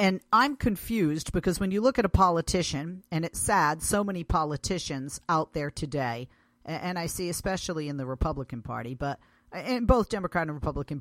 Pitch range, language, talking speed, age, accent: 140-185 Hz, English, 180 wpm, 40-59, American